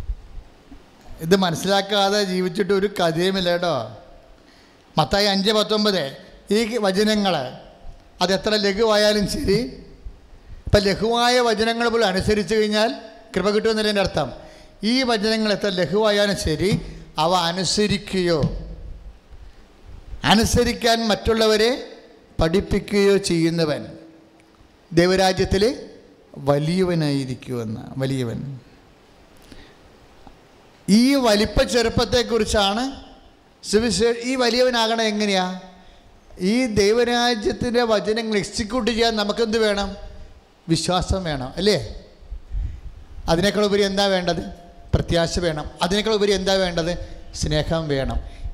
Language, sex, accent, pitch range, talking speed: English, male, Indian, 145-210 Hz, 65 wpm